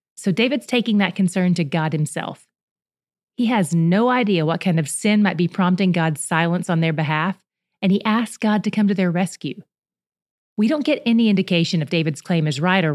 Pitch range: 170-215 Hz